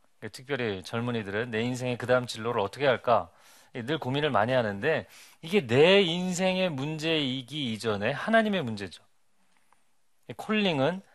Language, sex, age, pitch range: Korean, male, 40-59, 105-160 Hz